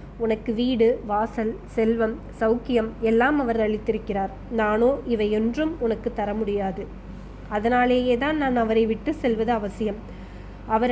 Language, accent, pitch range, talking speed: Tamil, native, 220-255 Hz, 115 wpm